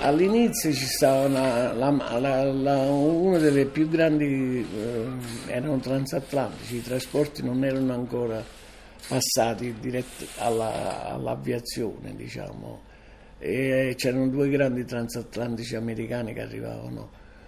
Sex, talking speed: male, 95 wpm